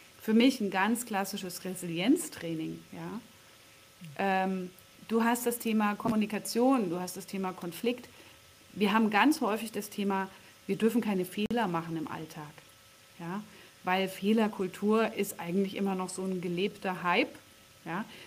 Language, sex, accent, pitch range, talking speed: German, female, German, 175-225 Hz, 130 wpm